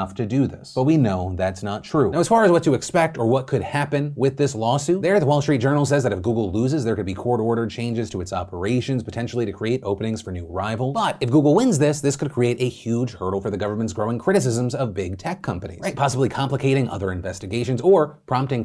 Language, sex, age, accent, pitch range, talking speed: English, male, 30-49, American, 110-145 Hz, 245 wpm